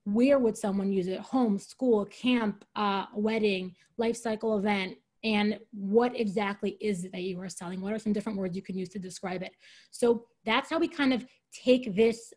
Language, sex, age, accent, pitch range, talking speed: English, female, 20-39, American, 205-250 Hz, 200 wpm